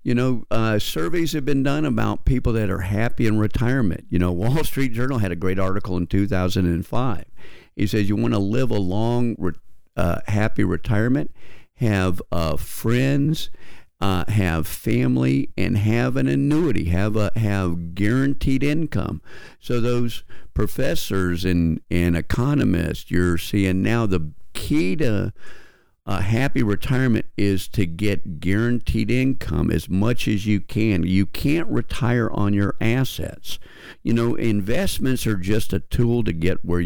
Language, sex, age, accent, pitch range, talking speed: English, male, 50-69, American, 95-120 Hz, 150 wpm